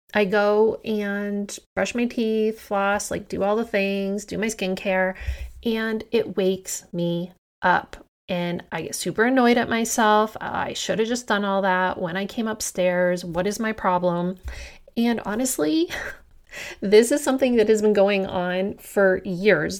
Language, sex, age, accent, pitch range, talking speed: English, female, 30-49, American, 185-220 Hz, 165 wpm